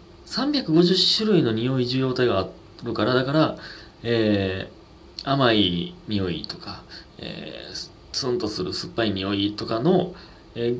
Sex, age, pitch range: male, 30-49, 90-125 Hz